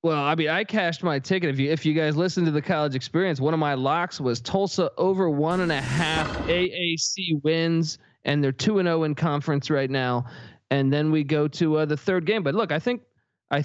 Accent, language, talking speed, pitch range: American, English, 235 wpm, 140-180 Hz